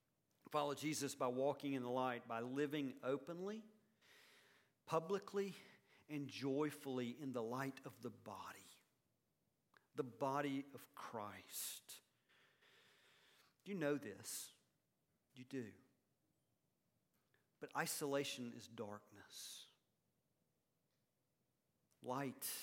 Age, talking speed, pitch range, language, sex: 50-69, 85 wpm, 120-155 Hz, English, male